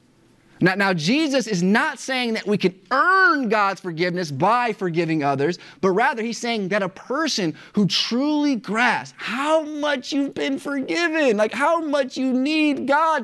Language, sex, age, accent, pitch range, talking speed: English, male, 30-49, American, 165-250 Hz, 165 wpm